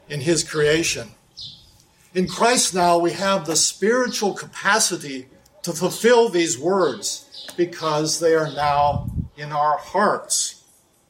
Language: English